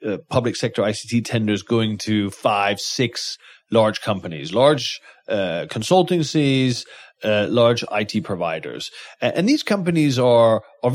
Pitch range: 115-180 Hz